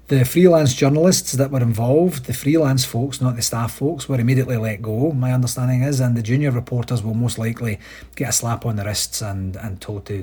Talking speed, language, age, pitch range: 215 wpm, English, 40-59, 105-130 Hz